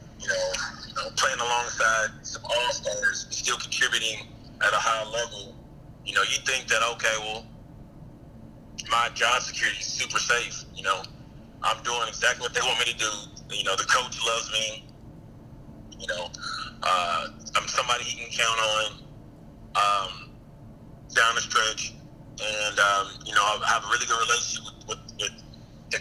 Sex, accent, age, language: male, American, 30-49, English